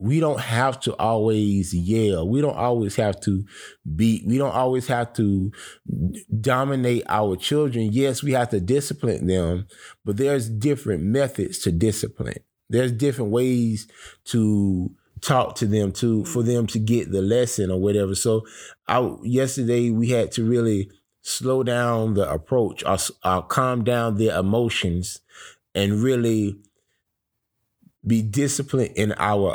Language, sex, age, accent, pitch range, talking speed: English, male, 20-39, American, 100-125 Hz, 140 wpm